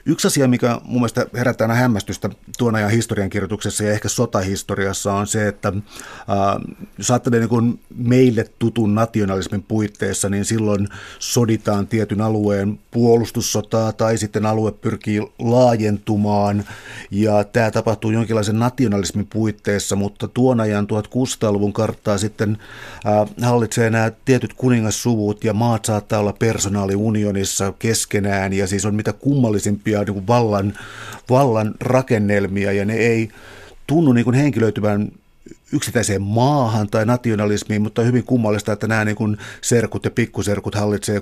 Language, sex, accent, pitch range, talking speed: Finnish, male, native, 100-115 Hz, 125 wpm